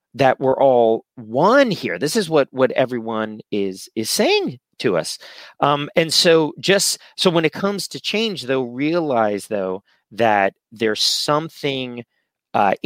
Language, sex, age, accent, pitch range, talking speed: English, male, 30-49, American, 120-160 Hz, 150 wpm